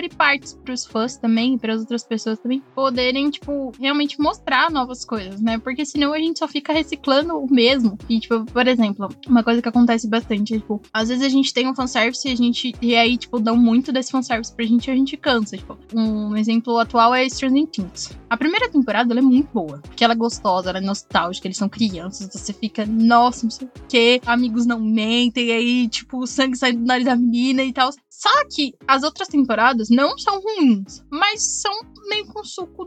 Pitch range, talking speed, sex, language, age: 230-290 Hz, 220 wpm, female, Portuguese, 10-29